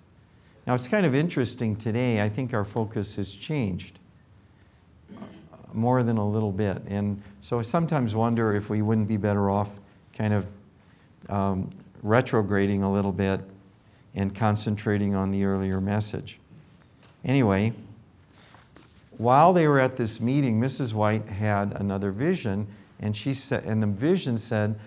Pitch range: 105-125 Hz